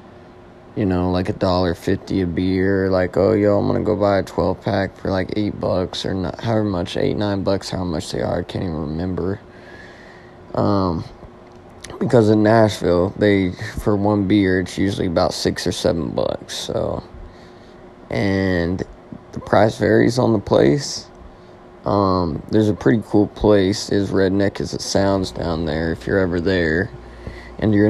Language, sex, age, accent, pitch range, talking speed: English, male, 20-39, American, 85-105 Hz, 170 wpm